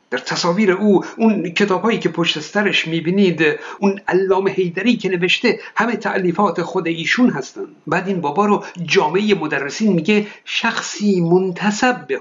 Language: Persian